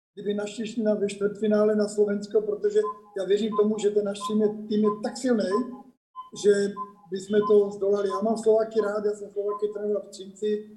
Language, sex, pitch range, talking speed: Czech, male, 195-215 Hz, 165 wpm